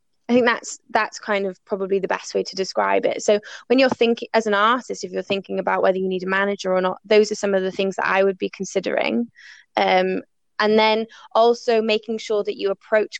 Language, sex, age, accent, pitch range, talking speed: English, female, 20-39, British, 195-230 Hz, 230 wpm